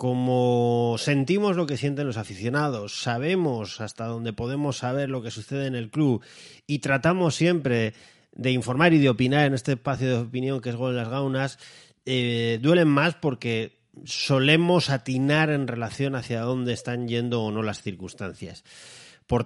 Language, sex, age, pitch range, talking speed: Spanish, male, 30-49, 110-145 Hz, 165 wpm